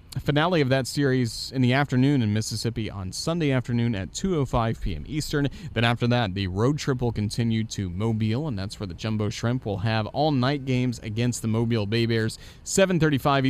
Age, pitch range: 30-49, 105-145 Hz